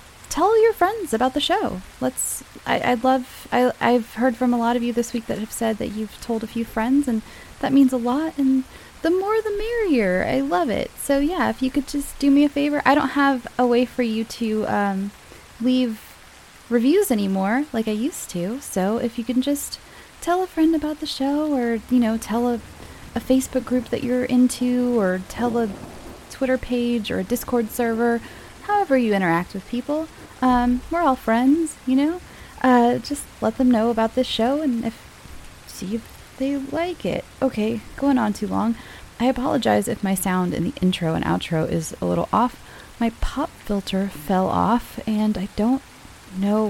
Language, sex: English, female